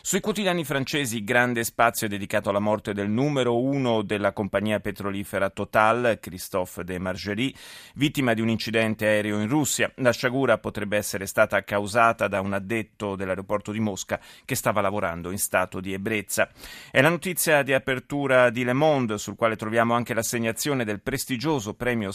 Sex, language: male, Italian